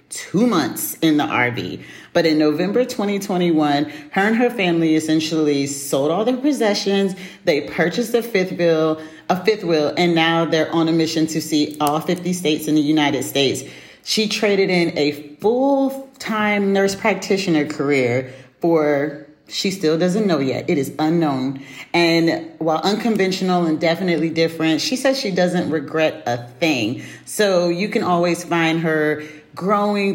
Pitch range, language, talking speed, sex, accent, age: 155-200 Hz, English, 150 wpm, female, American, 40-59